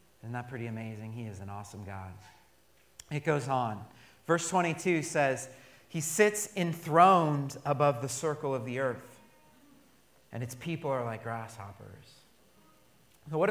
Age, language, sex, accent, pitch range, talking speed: 30-49, English, male, American, 120-165 Hz, 140 wpm